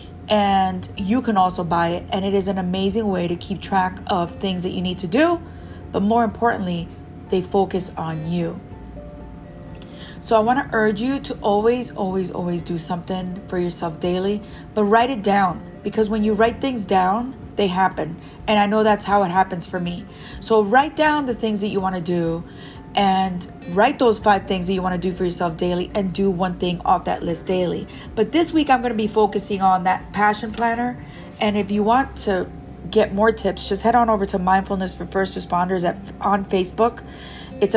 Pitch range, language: 185-215 Hz, English